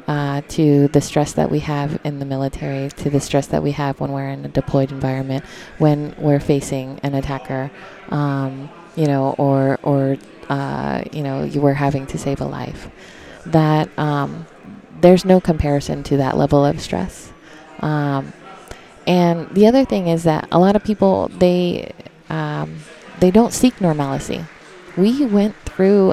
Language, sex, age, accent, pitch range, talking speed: English, female, 20-39, American, 145-180 Hz, 165 wpm